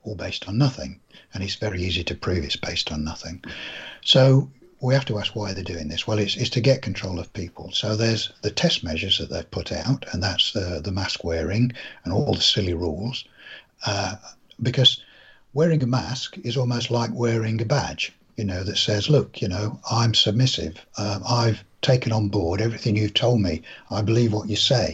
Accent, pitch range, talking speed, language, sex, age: British, 90-120 Hz, 205 wpm, English, male, 60-79